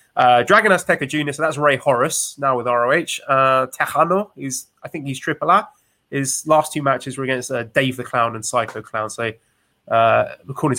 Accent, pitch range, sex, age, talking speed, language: British, 120-155 Hz, male, 20-39, 195 wpm, English